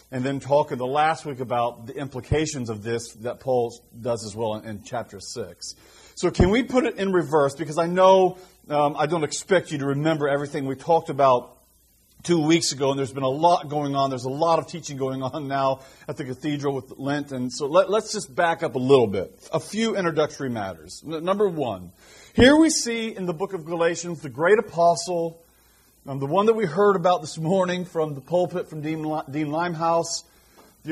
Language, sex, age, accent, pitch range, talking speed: English, male, 40-59, American, 140-190 Hz, 210 wpm